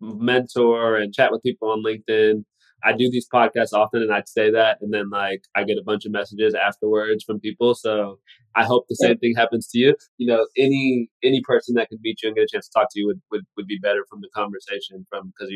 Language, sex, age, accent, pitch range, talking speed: English, male, 20-39, American, 105-130 Hz, 245 wpm